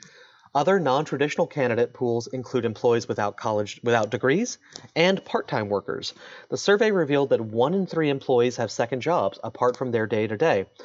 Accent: American